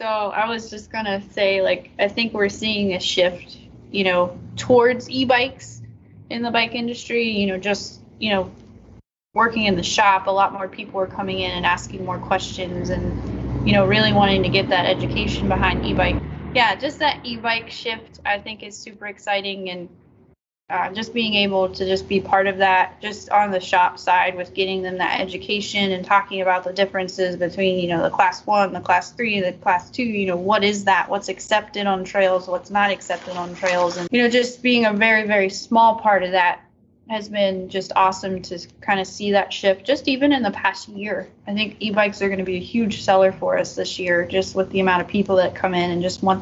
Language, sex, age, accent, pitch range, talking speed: English, female, 20-39, American, 185-215 Hz, 215 wpm